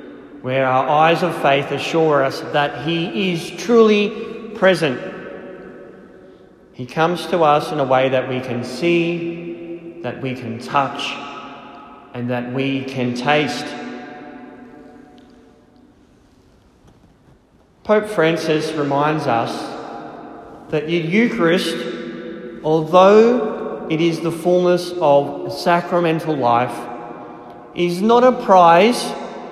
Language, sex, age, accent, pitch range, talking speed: English, male, 30-49, Australian, 140-175 Hz, 105 wpm